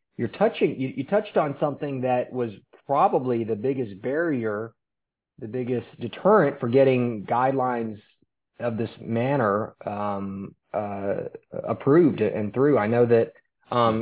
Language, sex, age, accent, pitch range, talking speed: English, male, 30-49, American, 110-130 Hz, 135 wpm